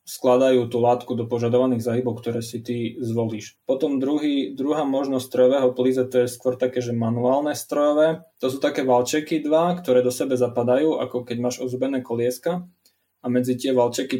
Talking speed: 175 wpm